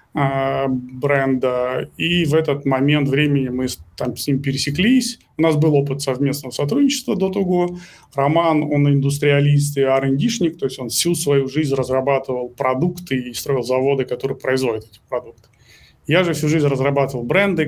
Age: 20-39